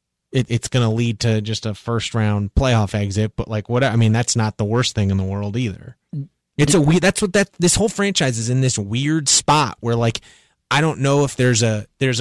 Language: English